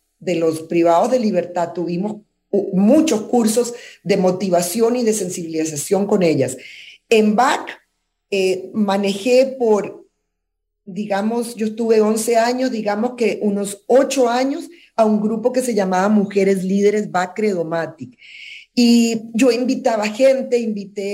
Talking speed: 130 wpm